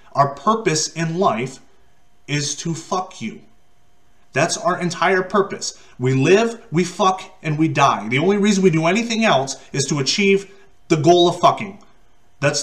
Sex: male